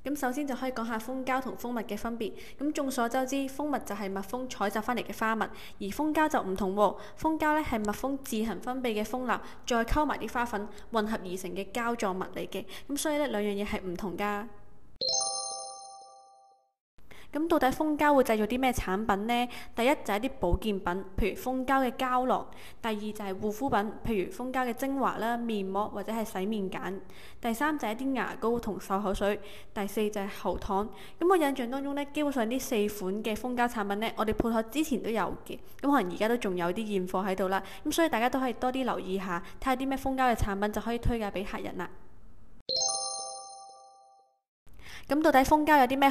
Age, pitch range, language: 10-29, 195-260 Hz, Chinese